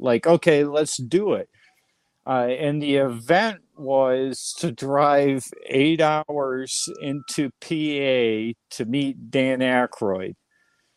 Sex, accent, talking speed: male, American, 110 wpm